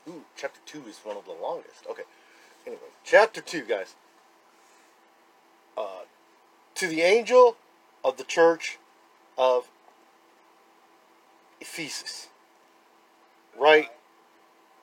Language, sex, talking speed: English, male, 95 wpm